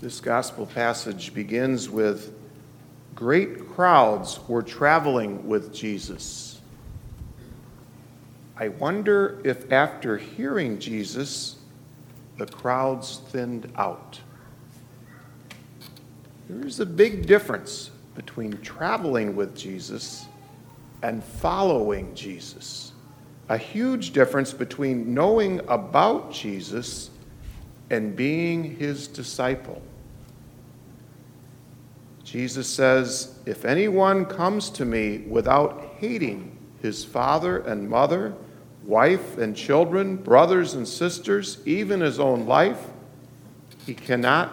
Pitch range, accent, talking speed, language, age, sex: 120-145 Hz, American, 95 wpm, English, 50-69, male